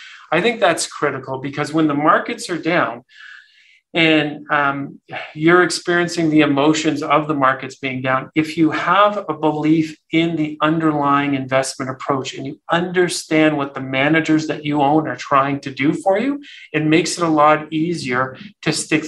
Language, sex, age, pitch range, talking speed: English, male, 40-59, 145-175 Hz, 170 wpm